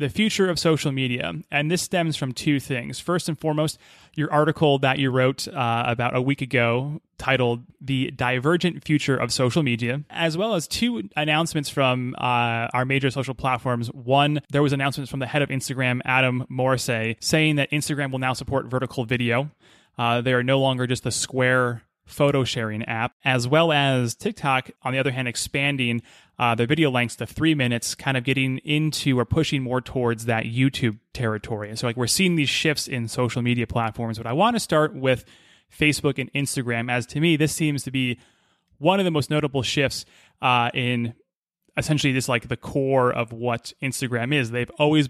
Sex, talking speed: male, 195 wpm